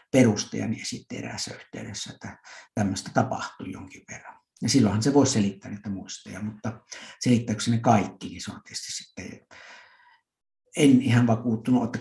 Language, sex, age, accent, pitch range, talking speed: Finnish, male, 60-79, native, 110-140 Hz, 135 wpm